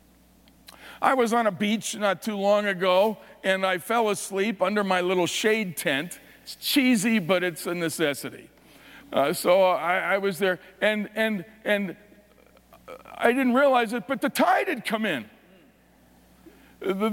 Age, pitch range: 50-69, 195-260 Hz